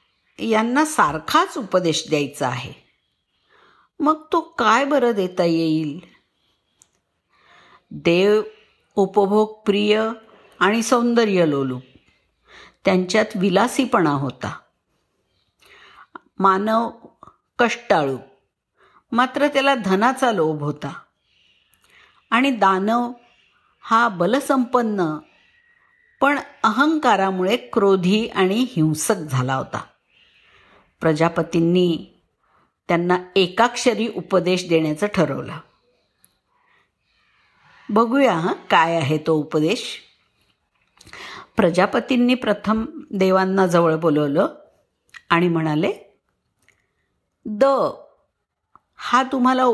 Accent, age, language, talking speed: native, 50-69, Marathi, 70 wpm